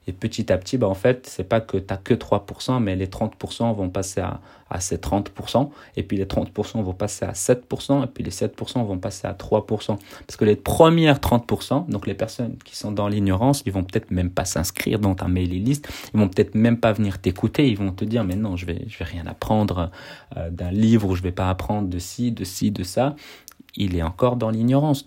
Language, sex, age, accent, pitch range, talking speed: French, male, 30-49, French, 95-120 Hz, 235 wpm